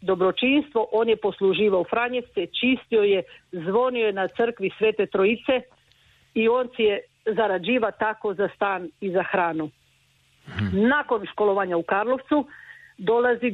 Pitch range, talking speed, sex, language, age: 190-250 Hz, 135 wpm, female, Croatian, 50-69